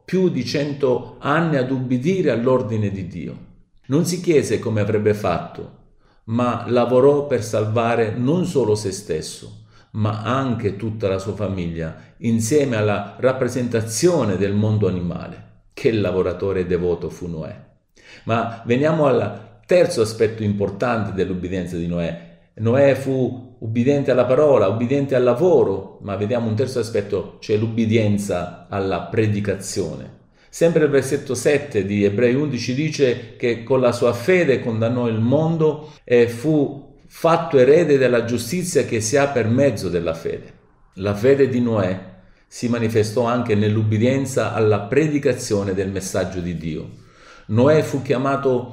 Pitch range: 100-135 Hz